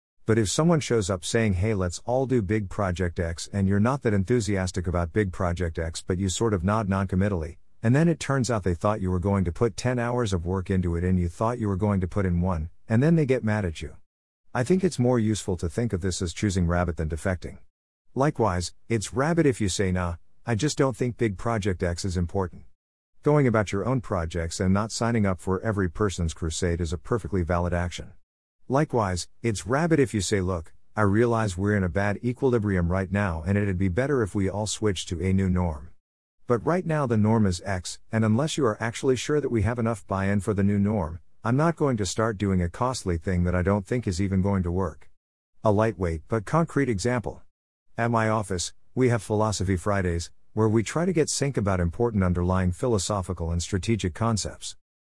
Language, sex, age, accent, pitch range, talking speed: English, male, 50-69, American, 90-115 Hz, 225 wpm